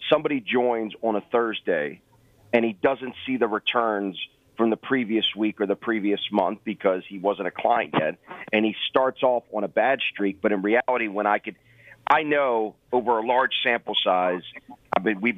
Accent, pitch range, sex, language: American, 110-135 Hz, male, English